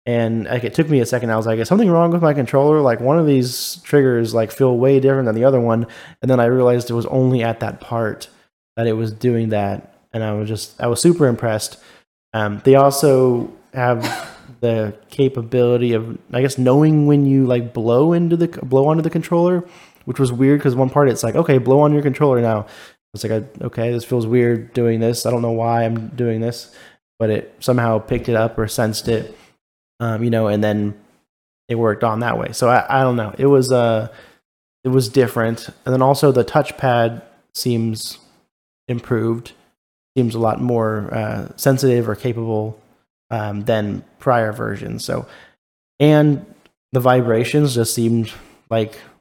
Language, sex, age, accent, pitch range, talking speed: English, male, 20-39, American, 115-130 Hz, 190 wpm